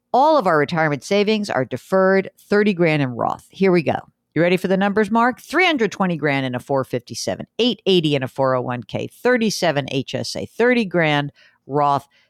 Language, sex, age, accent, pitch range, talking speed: English, female, 50-69, American, 145-200 Hz, 215 wpm